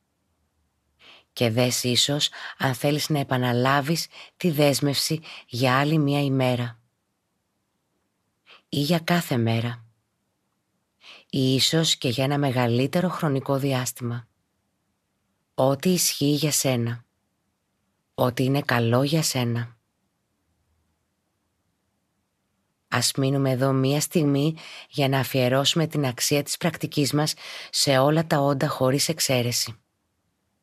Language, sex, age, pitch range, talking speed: Greek, female, 20-39, 100-150 Hz, 105 wpm